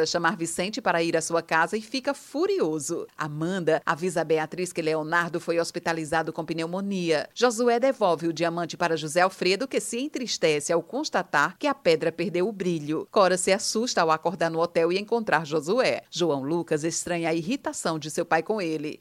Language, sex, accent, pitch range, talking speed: Portuguese, female, Brazilian, 160-205 Hz, 185 wpm